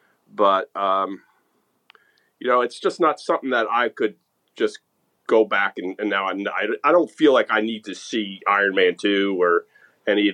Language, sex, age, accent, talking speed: English, male, 40-59, American, 185 wpm